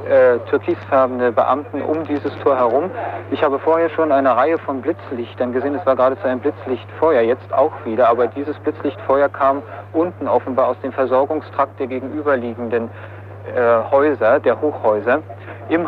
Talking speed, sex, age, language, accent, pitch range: 150 wpm, male, 50-69, German, German, 115-140 Hz